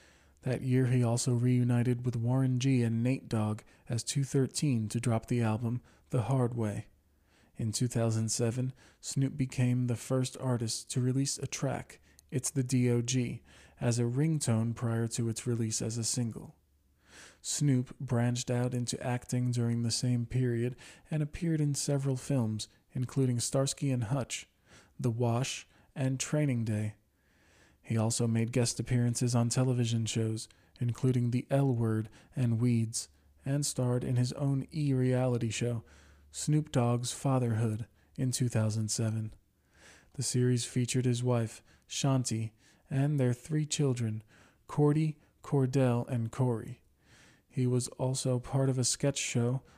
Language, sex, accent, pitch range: English, male, American, 115-130 Hz